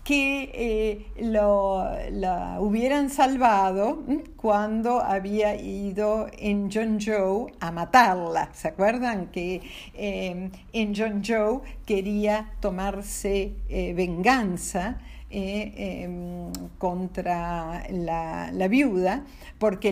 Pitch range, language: 190-245 Hz, Spanish